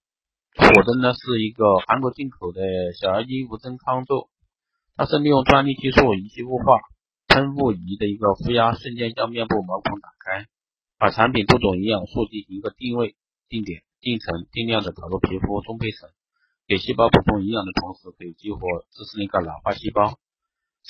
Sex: male